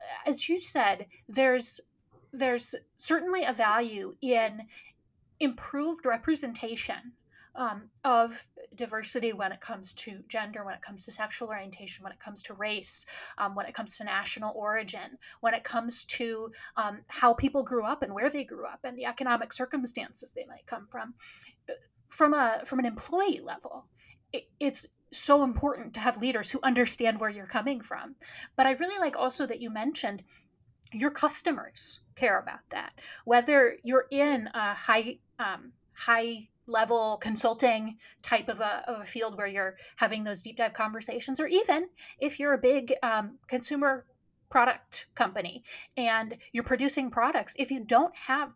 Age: 30-49